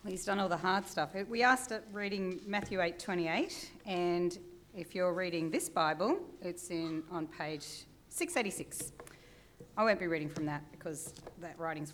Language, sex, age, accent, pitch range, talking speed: English, female, 40-59, Australian, 155-205 Hz, 160 wpm